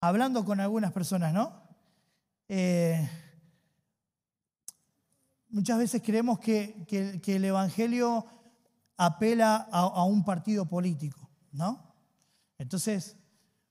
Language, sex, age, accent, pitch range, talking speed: Spanish, male, 20-39, Argentinian, 170-225 Hz, 90 wpm